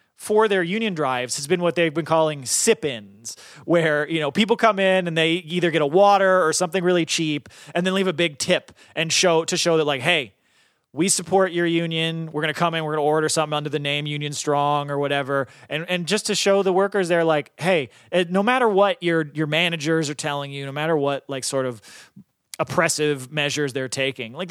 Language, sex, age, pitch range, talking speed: English, male, 30-49, 145-185 Hz, 225 wpm